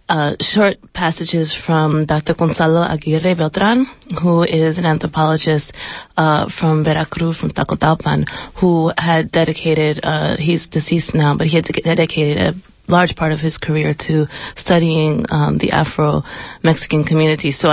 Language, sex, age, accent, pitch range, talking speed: English, female, 30-49, American, 150-165 Hz, 140 wpm